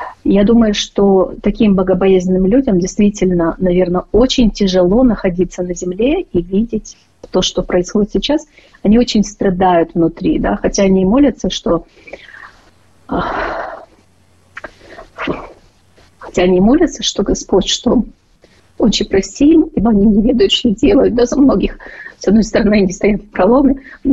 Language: Ukrainian